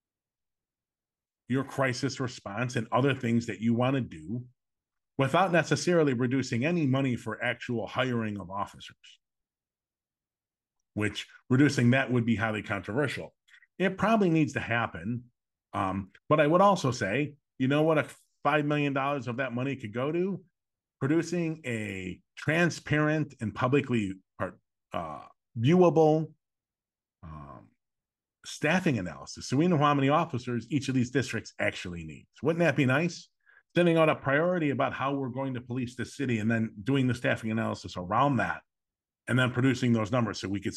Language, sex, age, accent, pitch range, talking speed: English, male, 40-59, American, 110-140 Hz, 155 wpm